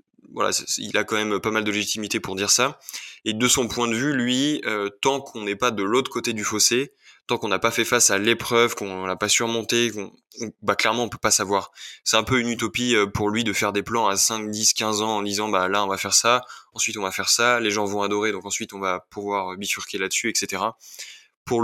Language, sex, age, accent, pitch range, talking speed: French, male, 20-39, French, 100-120 Hz, 255 wpm